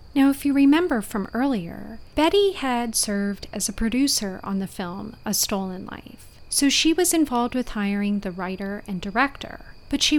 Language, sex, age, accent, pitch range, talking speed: English, female, 30-49, American, 205-270 Hz, 175 wpm